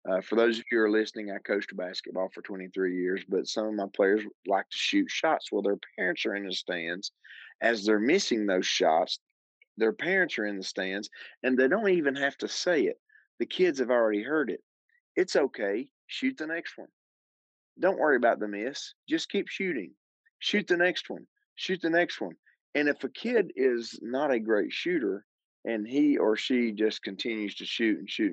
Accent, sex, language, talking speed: American, male, English, 205 wpm